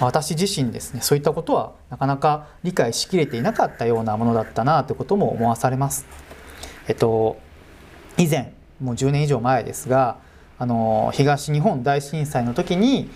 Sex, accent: male, native